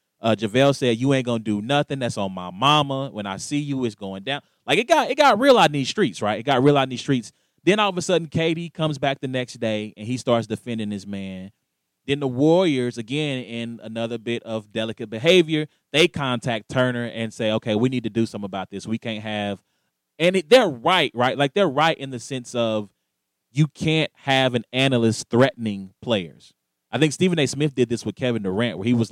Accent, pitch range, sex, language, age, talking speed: American, 110-140 Hz, male, English, 20-39, 235 wpm